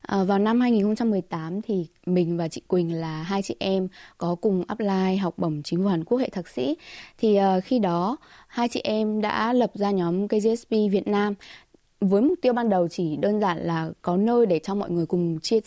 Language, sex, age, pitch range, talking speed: Vietnamese, female, 20-39, 175-220 Hz, 215 wpm